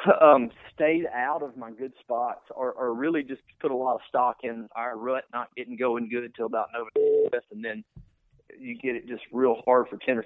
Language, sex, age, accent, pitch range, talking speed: English, male, 40-59, American, 125-155 Hz, 215 wpm